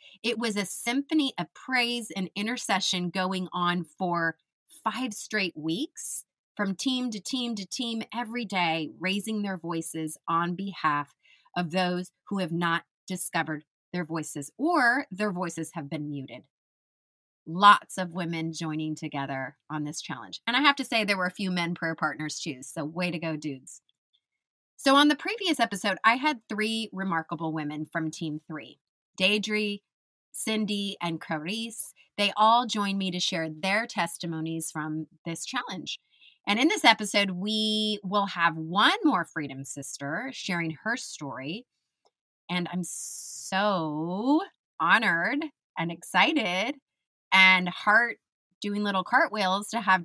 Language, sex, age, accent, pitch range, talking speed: English, female, 30-49, American, 165-215 Hz, 145 wpm